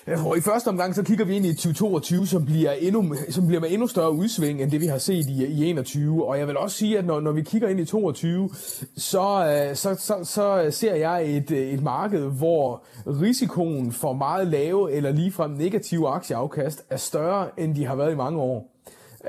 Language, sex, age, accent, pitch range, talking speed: Danish, male, 30-49, native, 135-180 Hz, 210 wpm